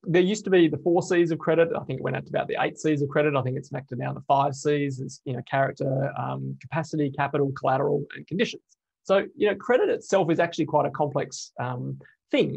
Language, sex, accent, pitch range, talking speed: English, male, Australian, 140-165 Hz, 250 wpm